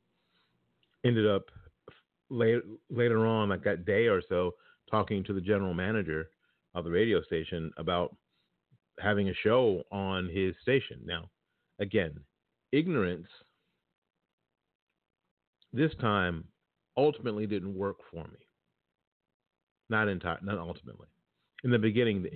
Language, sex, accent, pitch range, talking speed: English, male, American, 90-110 Hz, 120 wpm